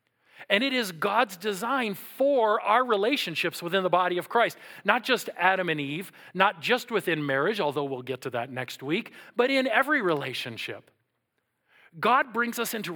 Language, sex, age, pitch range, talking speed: English, male, 40-59, 145-205 Hz, 170 wpm